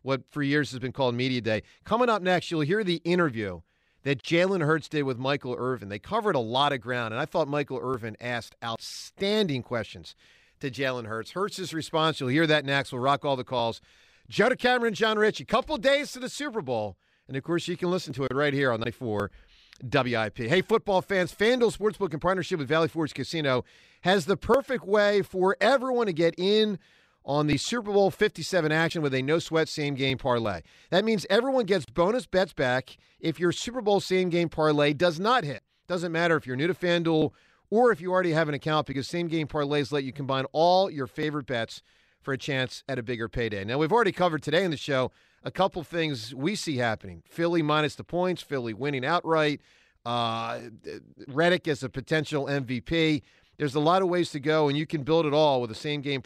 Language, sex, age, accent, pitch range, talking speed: English, male, 40-59, American, 130-180 Hz, 210 wpm